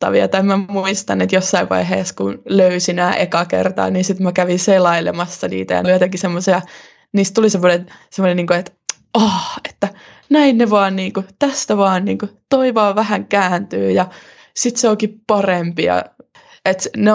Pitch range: 170-200 Hz